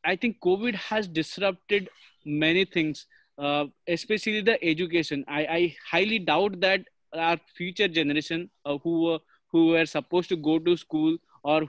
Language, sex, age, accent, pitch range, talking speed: English, male, 20-39, Indian, 160-190 Hz, 150 wpm